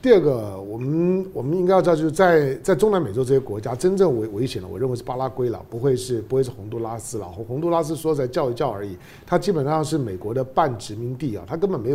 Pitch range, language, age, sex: 120-170 Hz, Chinese, 50-69, male